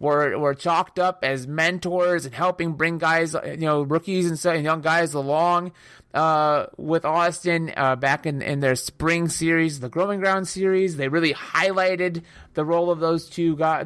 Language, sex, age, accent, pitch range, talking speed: English, male, 30-49, American, 145-175 Hz, 175 wpm